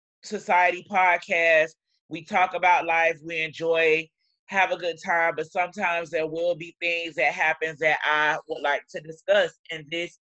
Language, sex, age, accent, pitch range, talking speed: English, male, 20-39, American, 155-175 Hz, 165 wpm